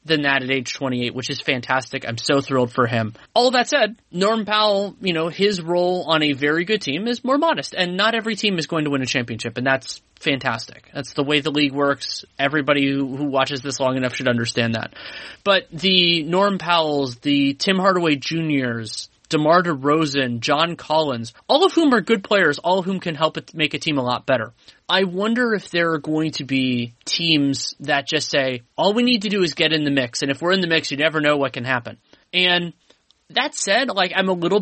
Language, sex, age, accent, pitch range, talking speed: English, male, 30-49, American, 135-180 Hz, 225 wpm